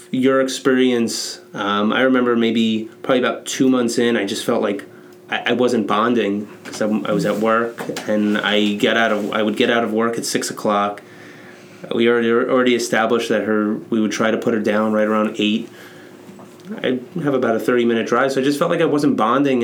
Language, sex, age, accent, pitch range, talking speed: English, male, 30-49, American, 105-120 Hz, 215 wpm